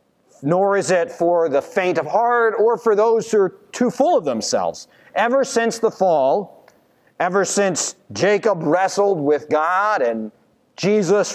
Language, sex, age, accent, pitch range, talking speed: English, male, 40-59, American, 155-210 Hz, 155 wpm